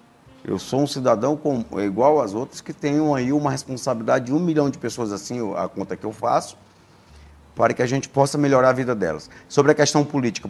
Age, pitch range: 50-69, 95-130 Hz